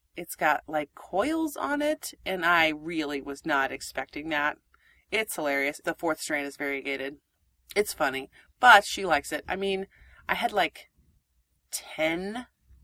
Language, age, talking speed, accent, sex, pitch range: English, 30-49, 150 wpm, American, female, 150-215 Hz